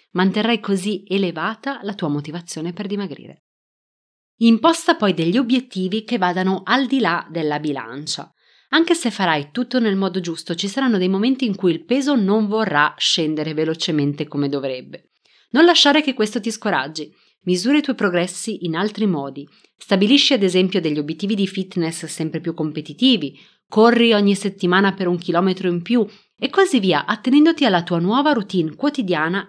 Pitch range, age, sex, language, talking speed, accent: 170-235 Hz, 30-49, female, Italian, 165 wpm, native